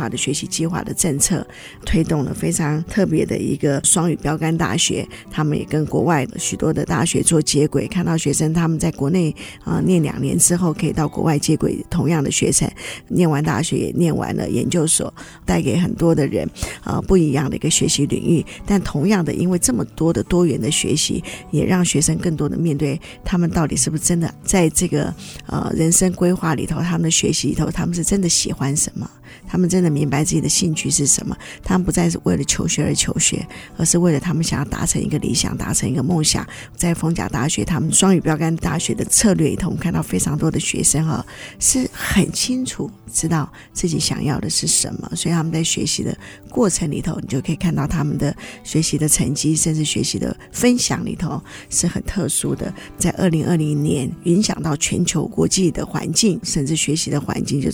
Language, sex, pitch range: Chinese, female, 150-175 Hz